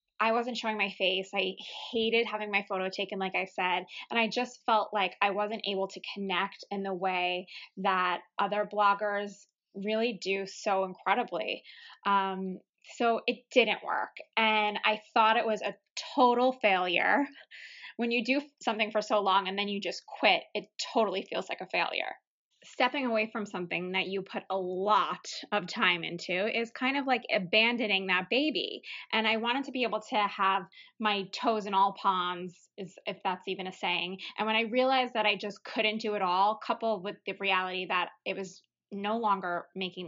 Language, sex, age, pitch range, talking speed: English, female, 20-39, 195-230 Hz, 185 wpm